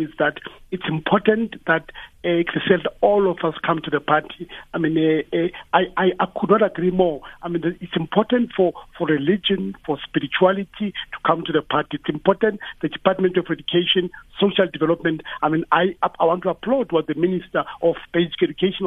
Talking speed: 190 wpm